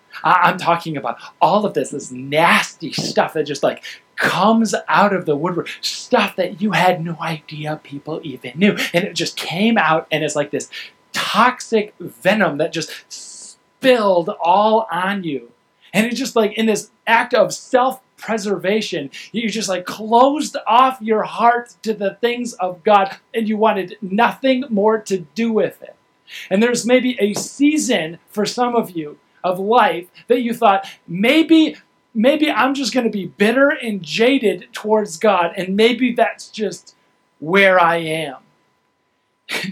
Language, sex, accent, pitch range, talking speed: English, male, American, 165-225 Hz, 160 wpm